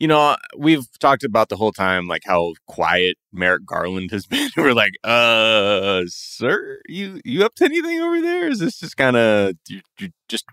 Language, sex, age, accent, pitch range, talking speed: English, male, 30-49, American, 95-125 Hz, 195 wpm